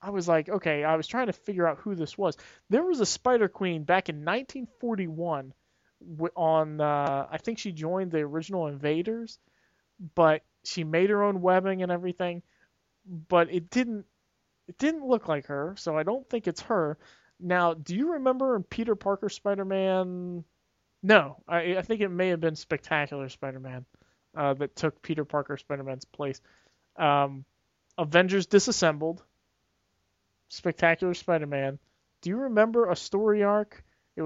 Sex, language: male, English